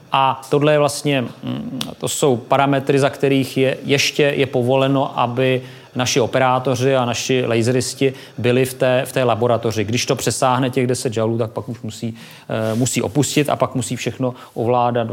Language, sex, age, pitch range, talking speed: Czech, male, 30-49, 115-135 Hz, 165 wpm